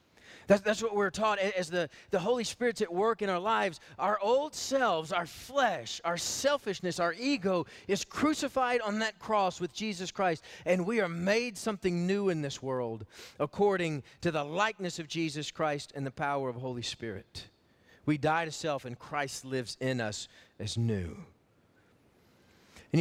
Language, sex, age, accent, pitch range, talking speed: English, male, 40-59, American, 135-200 Hz, 175 wpm